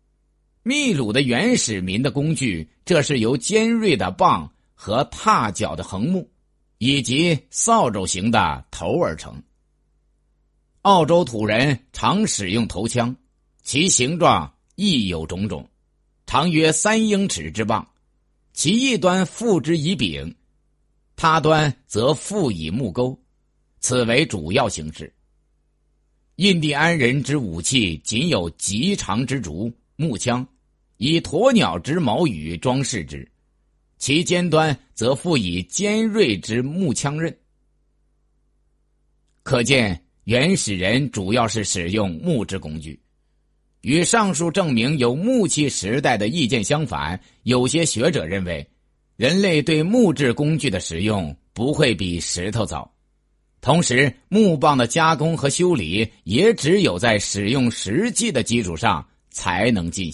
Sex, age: male, 50-69